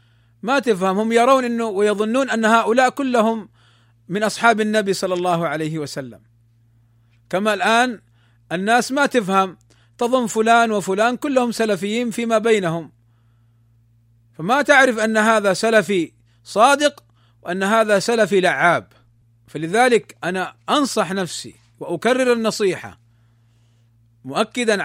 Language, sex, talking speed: Arabic, male, 105 wpm